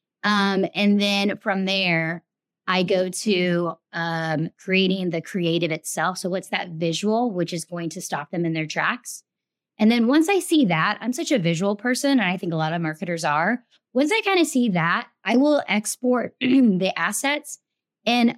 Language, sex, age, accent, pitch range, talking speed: English, female, 20-39, American, 175-240 Hz, 185 wpm